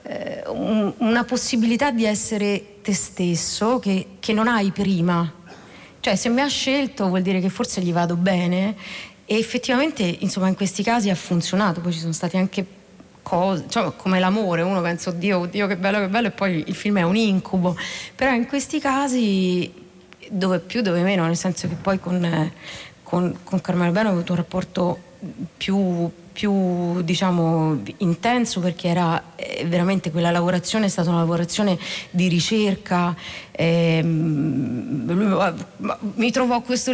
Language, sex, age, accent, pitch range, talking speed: Italian, female, 30-49, native, 180-260 Hz, 160 wpm